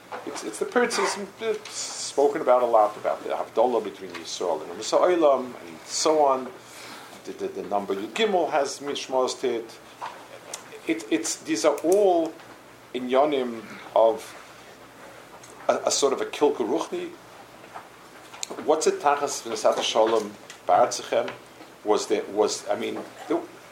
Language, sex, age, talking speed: English, male, 50-69, 135 wpm